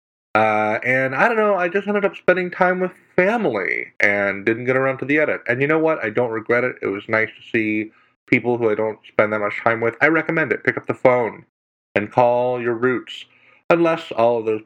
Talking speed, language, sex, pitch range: 235 wpm, English, male, 105-140 Hz